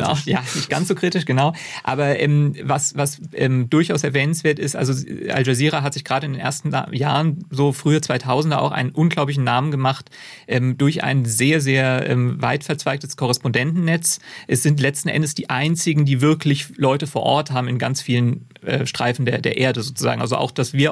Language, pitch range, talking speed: German, 130-150 Hz, 190 wpm